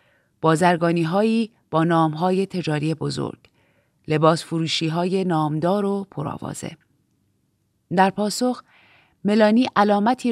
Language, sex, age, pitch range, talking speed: Persian, female, 30-49, 160-210 Hz, 95 wpm